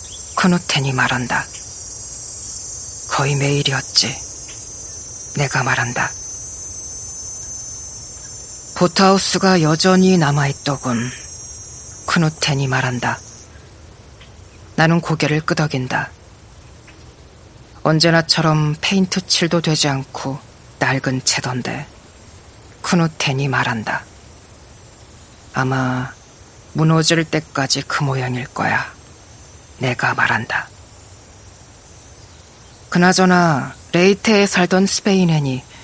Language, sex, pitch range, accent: Korean, female, 105-155 Hz, native